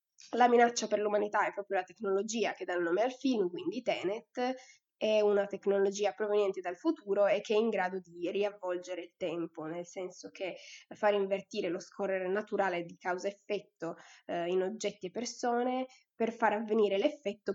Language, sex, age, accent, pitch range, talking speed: Italian, female, 20-39, native, 190-220 Hz, 170 wpm